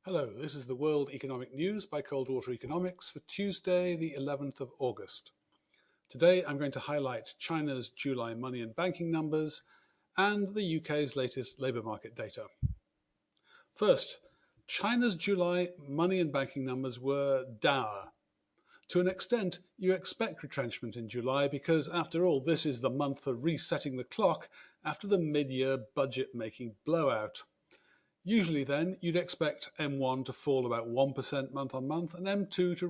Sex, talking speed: male, 150 wpm